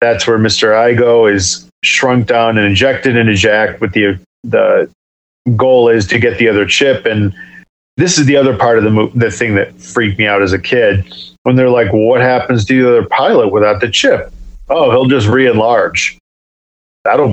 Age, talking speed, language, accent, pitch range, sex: 40-59, 200 wpm, English, American, 100-125 Hz, male